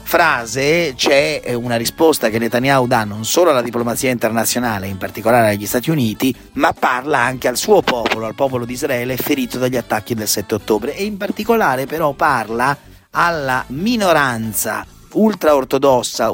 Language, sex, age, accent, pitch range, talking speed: Italian, male, 30-49, native, 110-140 Hz, 150 wpm